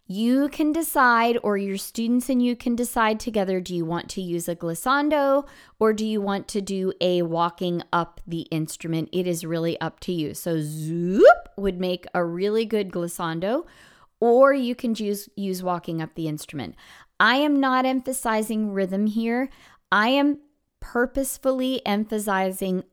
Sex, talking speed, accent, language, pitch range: female, 160 wpm, American, English, 180-235 Hz